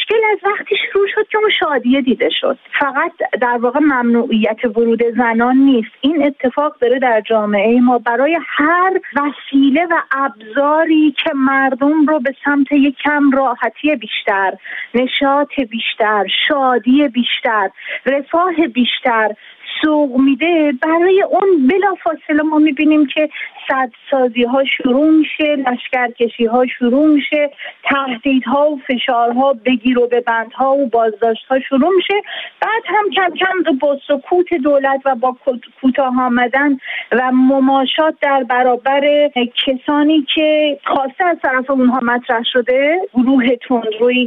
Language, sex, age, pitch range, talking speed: Persian, female, 40-59, 245-300 Hz, 125 wpm